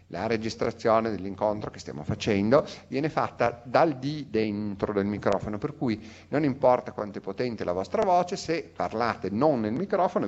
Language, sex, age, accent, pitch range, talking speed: Italian, male, 40-59, native, 95-120 Hz, 165 wpm